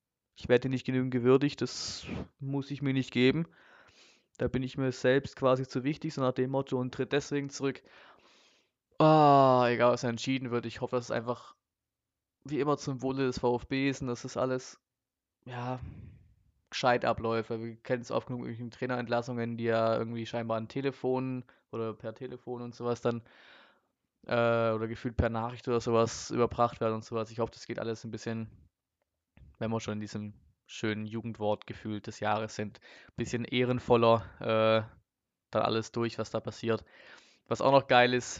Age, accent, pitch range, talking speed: 20-39, German, 115-130 Hz, 175 wpm